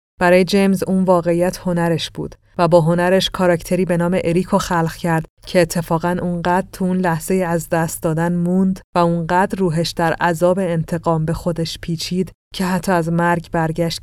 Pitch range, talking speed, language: 165-185 Hz, 165 wpm, Persian